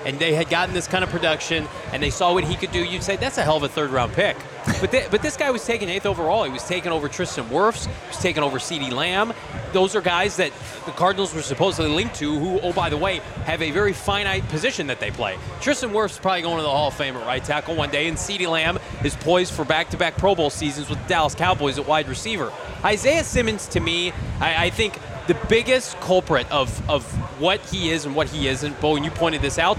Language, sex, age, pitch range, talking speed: English, male, 20-39, 150-210 Hz, 250 wpm